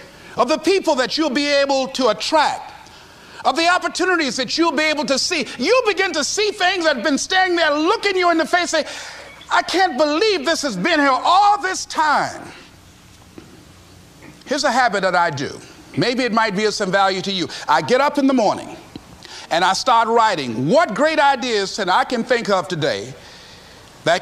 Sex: male